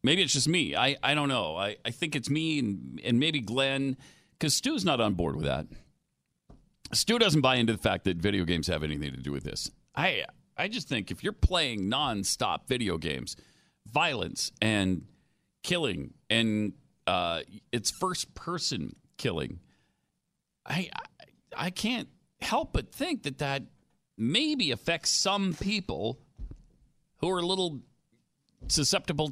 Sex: male